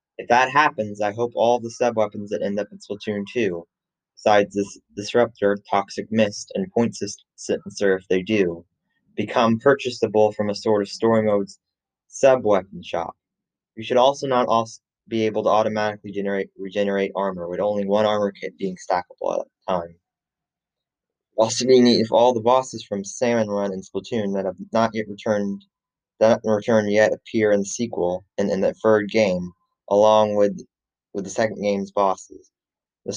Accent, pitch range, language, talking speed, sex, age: American, 100-110 Hz, English, 180 wpm, male, 20-39